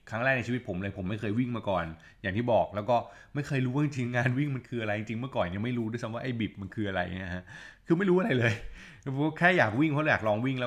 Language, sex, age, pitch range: Thai, male, 20-39, 100-130 Hz